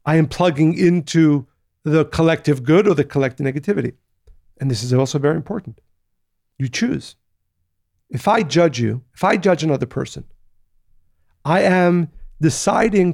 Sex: male